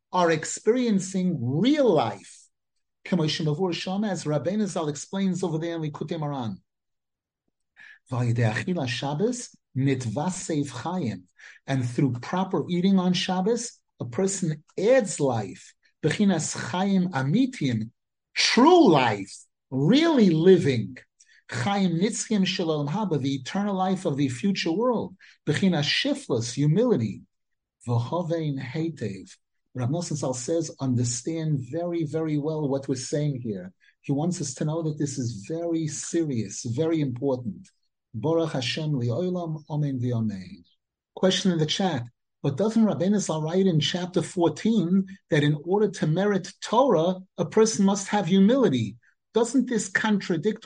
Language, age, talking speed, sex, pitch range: English, 50-69, 105 wpm, male, 145-195 Hz